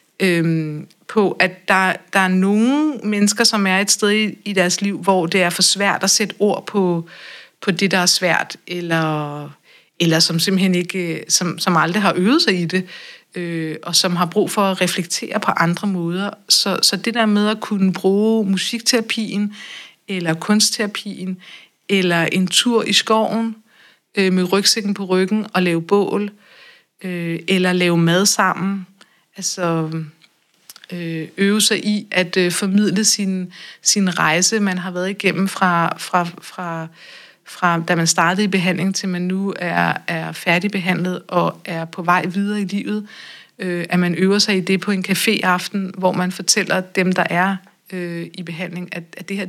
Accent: native